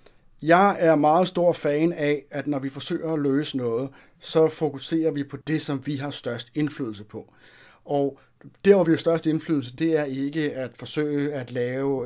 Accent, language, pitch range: native, Danish, 130-155 Hz